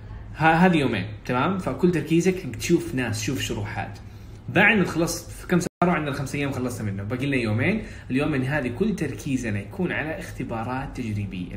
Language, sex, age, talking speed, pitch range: Arabic, male, 20-39, 160 wpm, 110-170 Hz